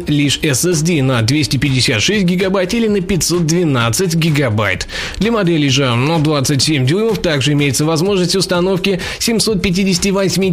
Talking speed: 115 wpm